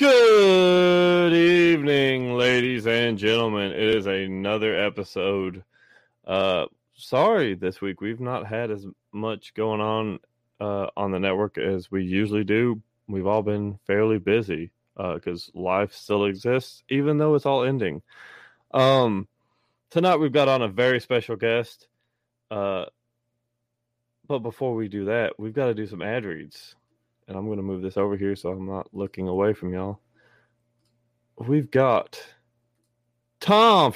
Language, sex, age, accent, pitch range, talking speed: English, male, 20-39, American, 100-120 Hz, 145 wpm